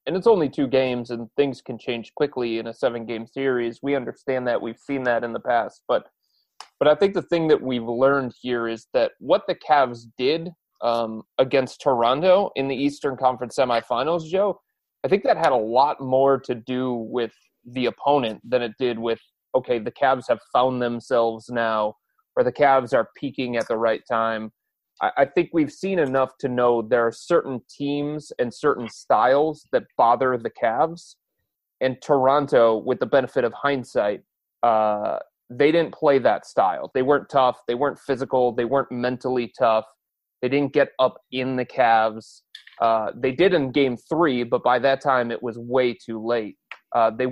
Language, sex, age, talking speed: English, male, 30-49, 185 wpm